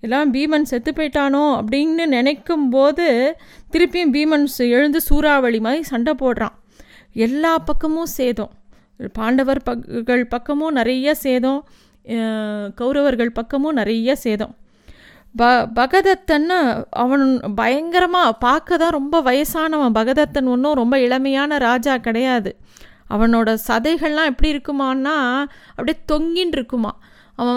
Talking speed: 100 wpm